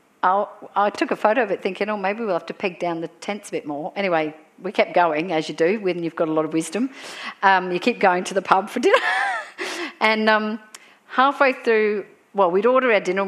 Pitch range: 175-225 Hz